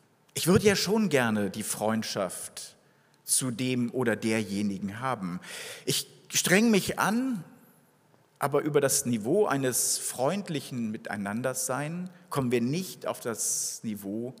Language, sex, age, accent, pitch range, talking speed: German, male, 50-69, German, 120-160 Hz, 120 wpm